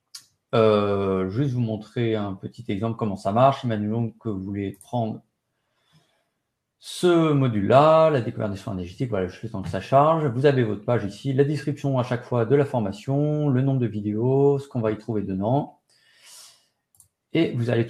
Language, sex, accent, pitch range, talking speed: French, male, French, 110-140 Hz, 180 wpm